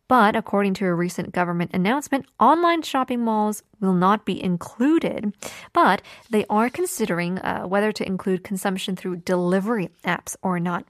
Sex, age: female, 20-39